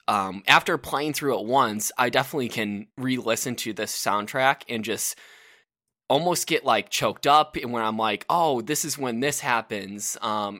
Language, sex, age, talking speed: English, male, 10-29, 175 wpm